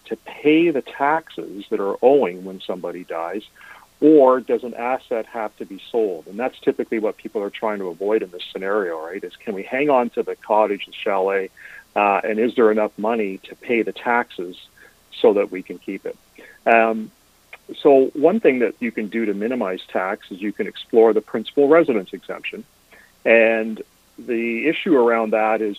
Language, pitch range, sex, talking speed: English, 100-120 Hz, male, 190 wpm